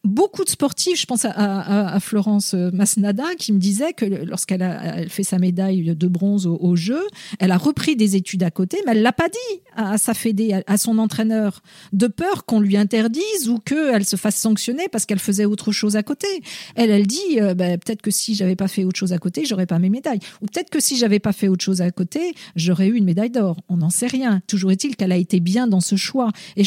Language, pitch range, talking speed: French, 195-250 Hz, 255 wpm